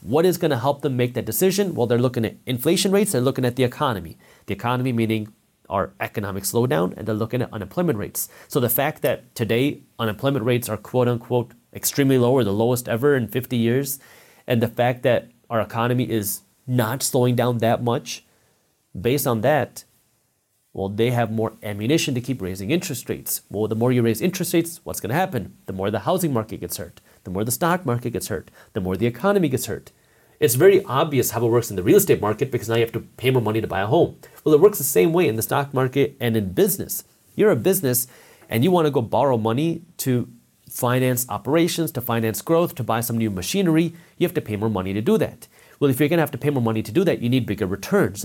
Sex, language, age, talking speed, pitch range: male, English, 30-49, 235 wpm, 110-145 Hz